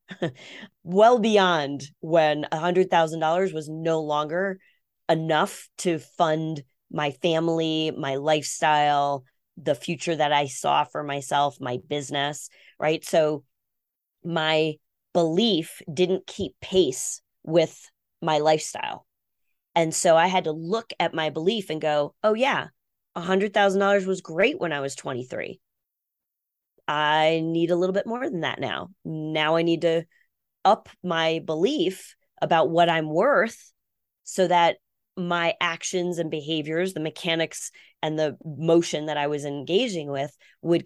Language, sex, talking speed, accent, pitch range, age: English, female, 130 wpm, American, 150-180 Hz, 20-39